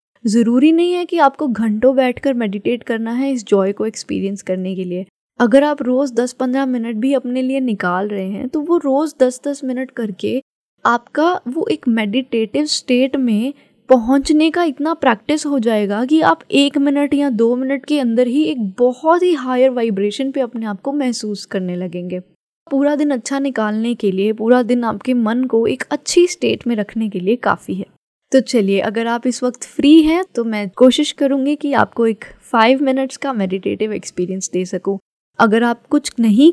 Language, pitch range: Hindi, 205-275 Hz